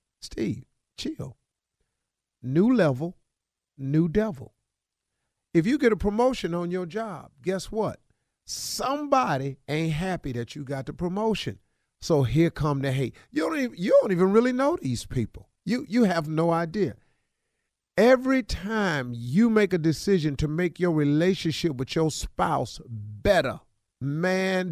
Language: English